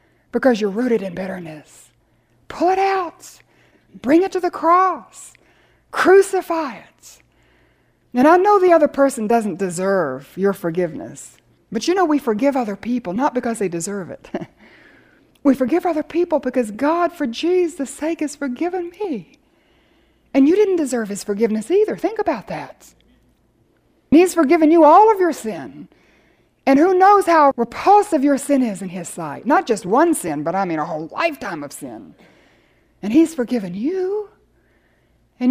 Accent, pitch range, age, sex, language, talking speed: American, 230-345 Hz, 60-79, female, English, 160 wpm